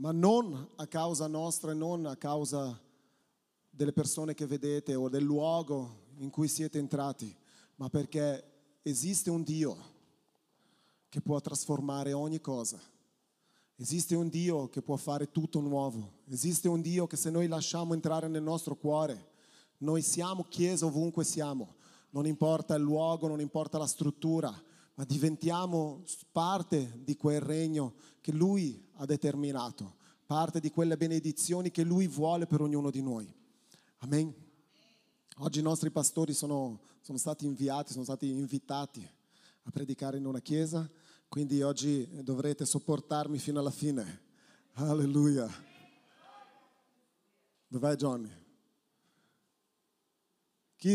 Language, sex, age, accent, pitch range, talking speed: Italian, male, 30-49, native, 140-160 Hz, 130 wpm